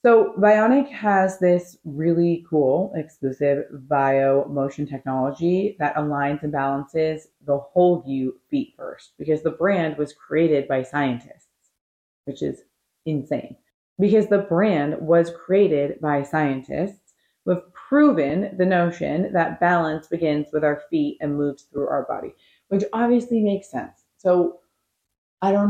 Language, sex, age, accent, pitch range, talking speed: English, female, 30-49, American, 155-210 Hz, 140 wpm